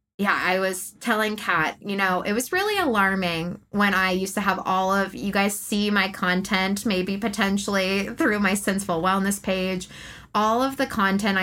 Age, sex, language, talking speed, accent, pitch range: 20-39, female, English, 180 wpm, American, 175-205 Hz